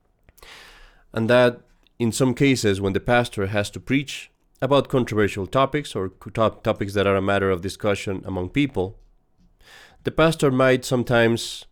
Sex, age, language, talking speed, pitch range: male, 30-49, English, 145 wpm, 100-140 Hz